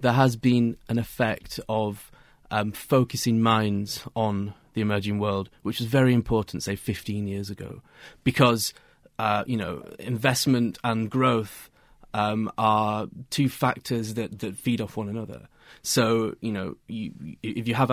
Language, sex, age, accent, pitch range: Chinese, male, 30-49, British, 110-130 Hz